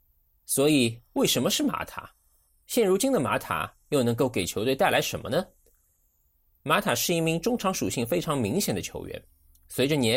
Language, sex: Chinese, male